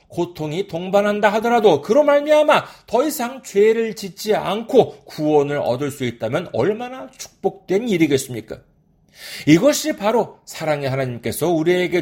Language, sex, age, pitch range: Korean, male, 40-59, 135-205 Hz